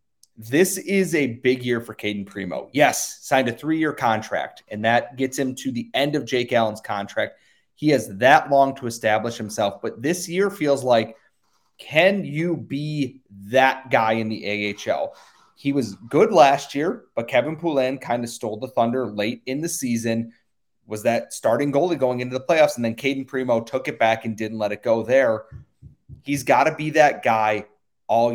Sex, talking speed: male, 190 wpm